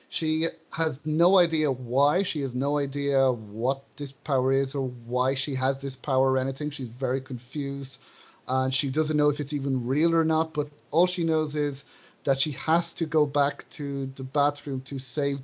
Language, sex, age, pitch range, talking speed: English, male, 30-49, 140-170 Hz, 195 wpm